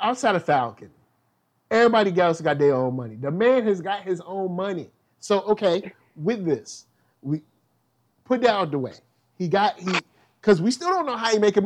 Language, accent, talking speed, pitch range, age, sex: English, American, 195 wpm, 145-200 Hz, 30-49, male